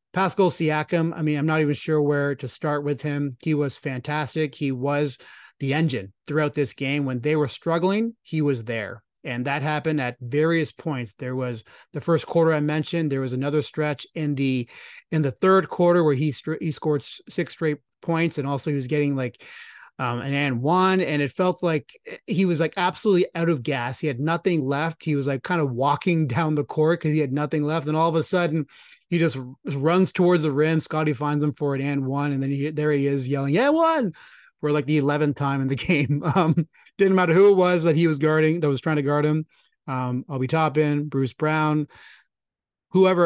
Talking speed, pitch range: 215 wpm, 140-165 Hz